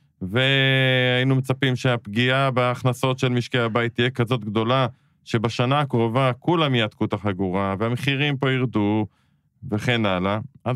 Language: Hebrew